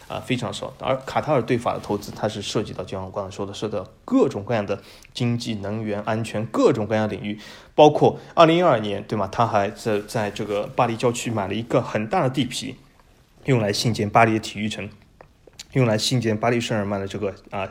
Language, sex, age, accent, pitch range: Chinese, male, 20-39, native, 105-130 Hz